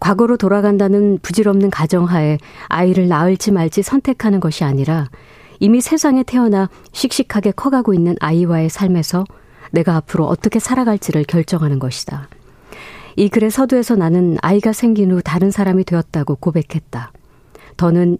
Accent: native